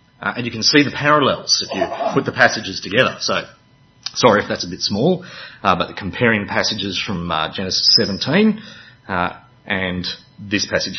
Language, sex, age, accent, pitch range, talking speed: English, male, 30-49, Australian, 105-140 Hz, 175 wpm